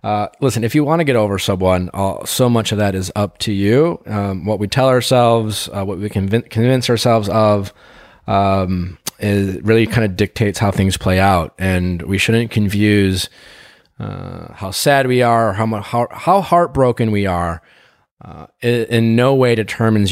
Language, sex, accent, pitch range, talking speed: English, male, American, 90-115 Hz, 175 wpm